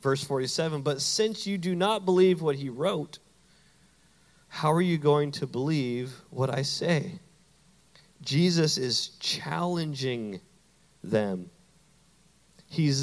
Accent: American